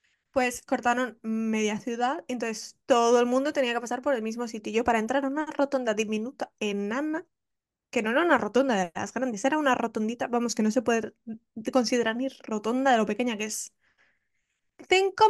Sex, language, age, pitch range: female, Spanish, 20-39, 220-265 Hz